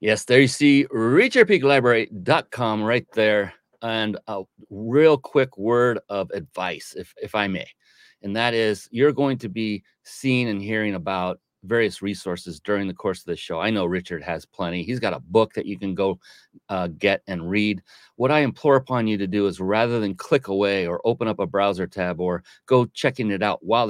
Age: 40-59